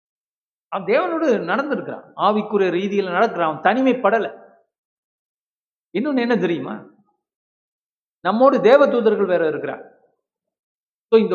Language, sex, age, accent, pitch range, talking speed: Tamil, male, 50-69, native, 180-235 Hz, 55 wpm